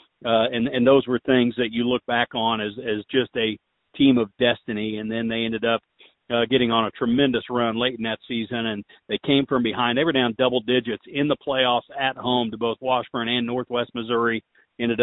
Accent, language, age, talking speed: American, English, 40-59, 220 wpm